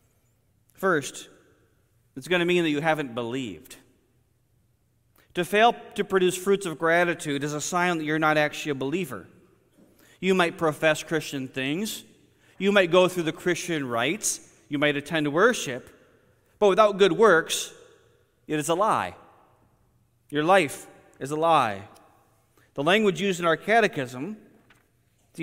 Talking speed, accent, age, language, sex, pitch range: 145 wpm, American, 40-59, English, male, 130-190 Hz